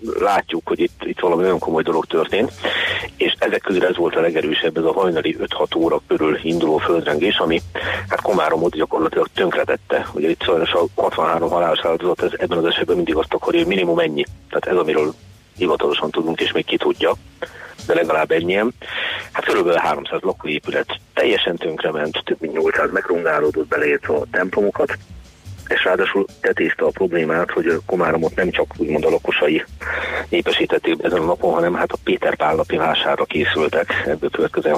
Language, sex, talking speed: Hungarian, male, 165 wpm